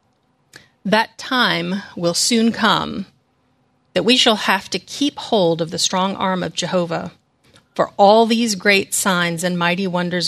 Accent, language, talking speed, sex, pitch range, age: American, English, 150 wpm, female, 170-205 Hz, 40-59